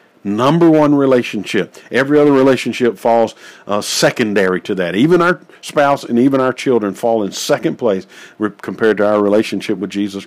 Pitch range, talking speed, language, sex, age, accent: 110-150 Hz, 165 wpm, English, male, 50-69, American